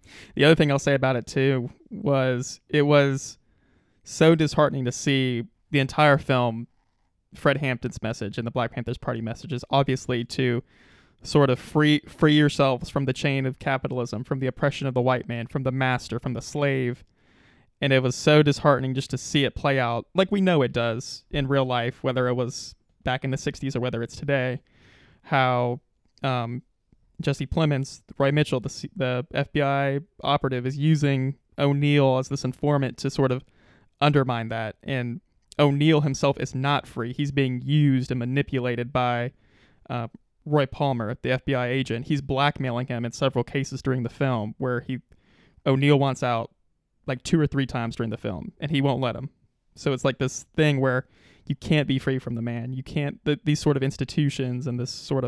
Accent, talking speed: American, 185 wpm